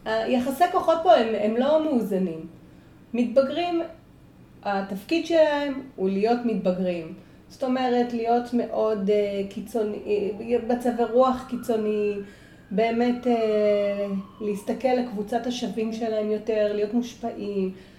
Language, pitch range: Hebrew, 205-255 Hz